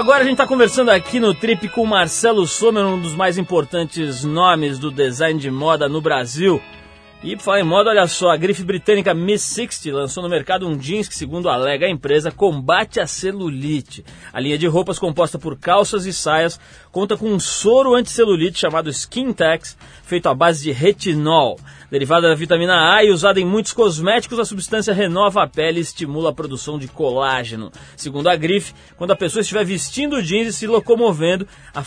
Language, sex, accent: Portuguese, male, Brazilian